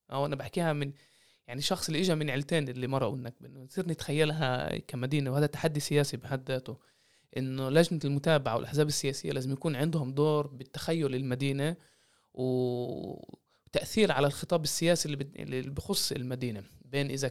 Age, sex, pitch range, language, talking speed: 20-39, male, 130-160 Hz, Arabic, 145 wpm